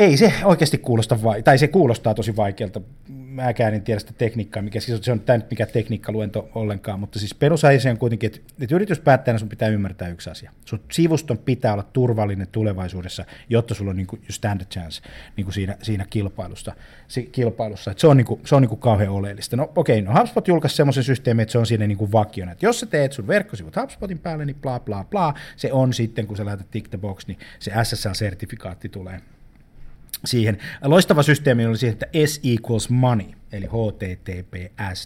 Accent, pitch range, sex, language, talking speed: native, 105-130 Hz, male, Finnish, 195 wpm